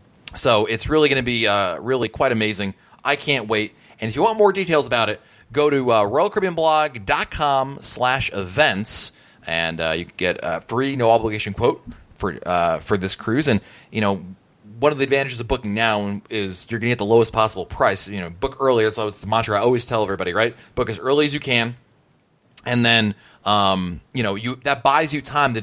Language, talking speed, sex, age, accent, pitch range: English, 220 wpm, male, 30-49, American, 110-155 Hz